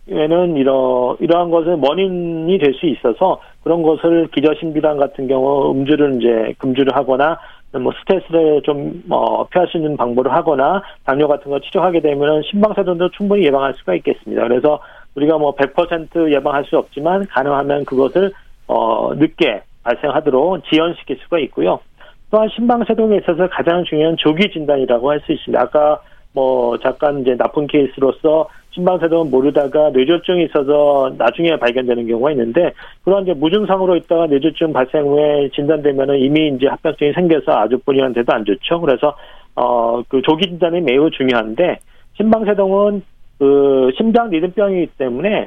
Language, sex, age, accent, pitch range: Korean, male, 40-59, native, 140-175 Hz